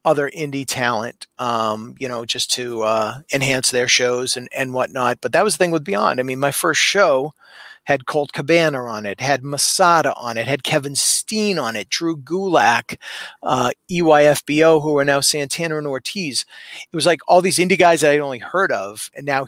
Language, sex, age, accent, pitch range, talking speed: English, male, 40-59, American, 125-150 Hz, 200 wpm